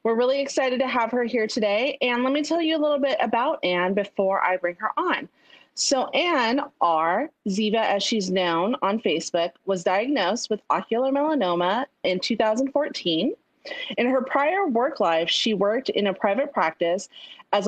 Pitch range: 190-275 Hz